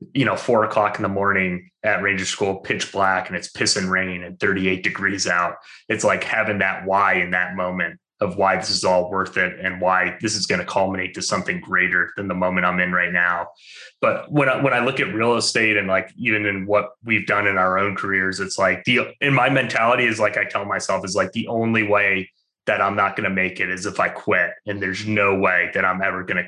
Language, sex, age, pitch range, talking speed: English, male, 20-39, 95-110 Hz, 245 wpm